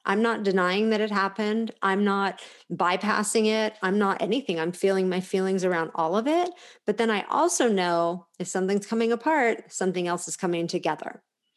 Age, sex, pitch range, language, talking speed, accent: 40-59, female, 175-220 Hz, English, 180 wpm, American